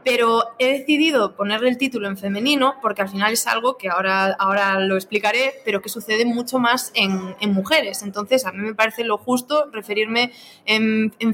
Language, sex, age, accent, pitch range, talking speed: Spanish, female, 20-39, Spanish, 210-255 Hz, 190 wpm